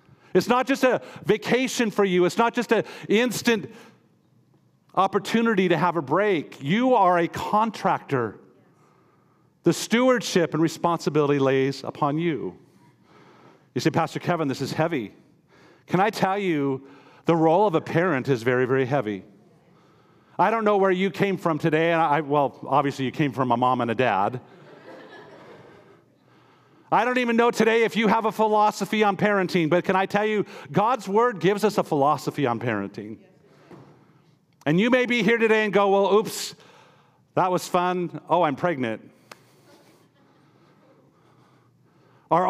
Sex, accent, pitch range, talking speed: male, American, 155-210 Hz, 155 wpm